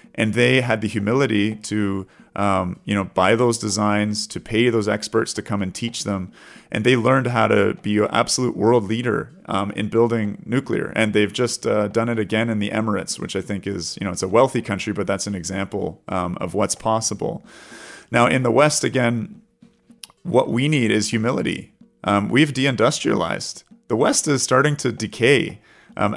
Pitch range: 100-120 Hz